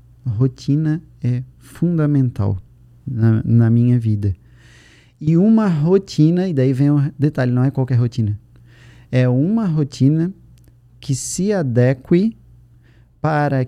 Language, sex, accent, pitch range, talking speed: Portuguese, male, Brazilian, 120-150 Hz, 115 wpm